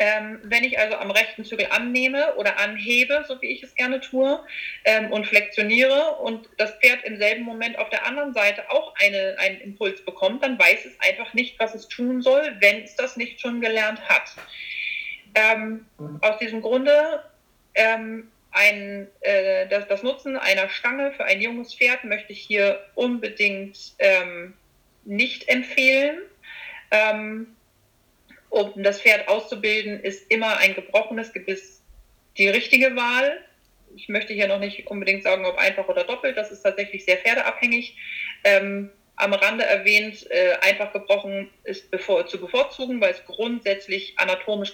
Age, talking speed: 40-59, 155 wpm